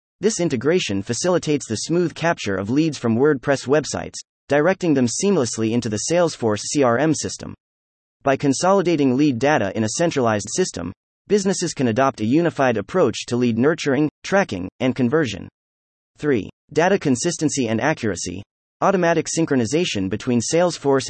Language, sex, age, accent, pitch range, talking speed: English, male, 30-49, American, 105-155 Hz, 135 wpm